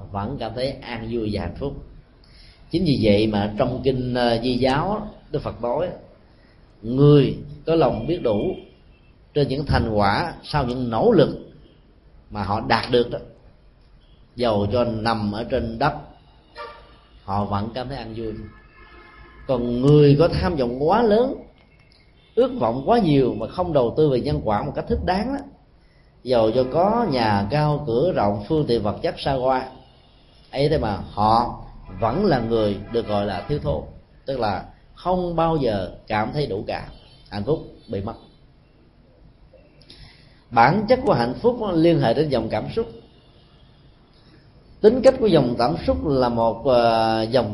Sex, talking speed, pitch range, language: male, 160 wpm, 115-155 Hz, Vietnamese